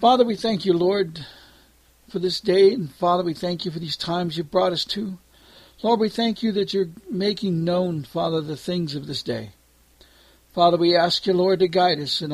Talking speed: 210 wpm